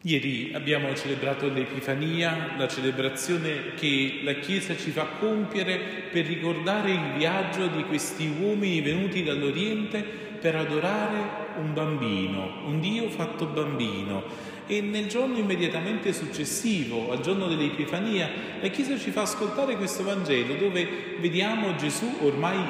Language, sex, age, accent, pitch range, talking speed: Italian, male, 40-59, native, 145-210 Hz, 125 wpm